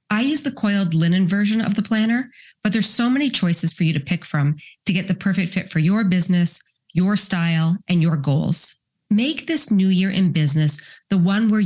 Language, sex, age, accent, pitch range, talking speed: English, female, 30-49, American, 165-205 Hz, 210 wpm